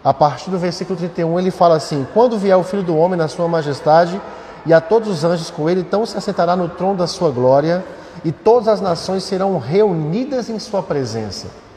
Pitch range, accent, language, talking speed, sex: 160-200 Hz, Brazilian, Portuguese, 210 wpm, male